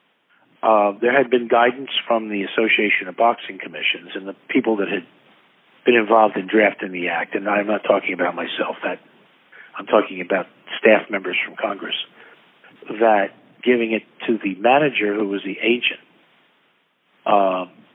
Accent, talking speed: American, 155 wpm